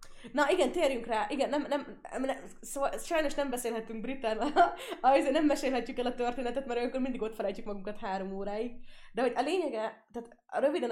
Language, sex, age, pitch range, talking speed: Hungarian, female, 20-39, 185-240 Hz, 180 wpm